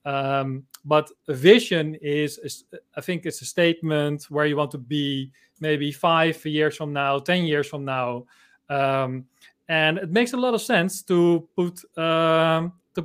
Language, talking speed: English, 170 wpm